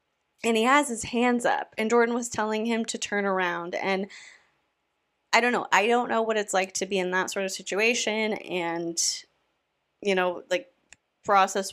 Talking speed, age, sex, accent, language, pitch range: 185 wpm, 20-39, female, American, English, 185-220 Hz